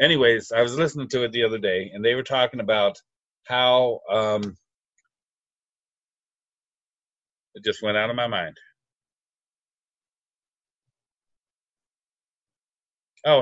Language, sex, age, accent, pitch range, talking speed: English, male, 50-69, American, 115-140 Hz, 105 wpm